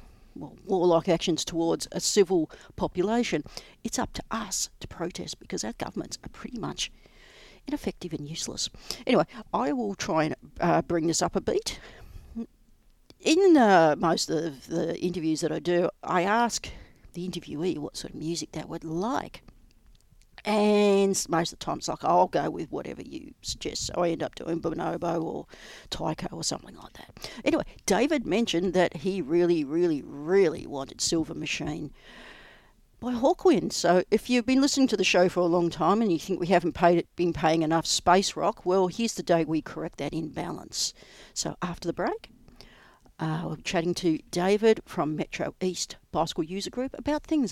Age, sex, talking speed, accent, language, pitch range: 60-79, female, 180 wpm, Australian, English, 165-200 Hz